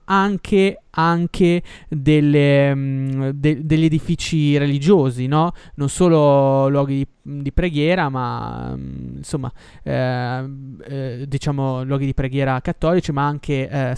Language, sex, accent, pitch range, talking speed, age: Italian, male, native, 125-150 Hz, 105 wpm, 20-39